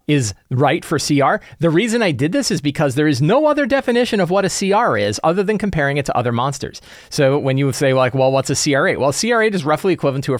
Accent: American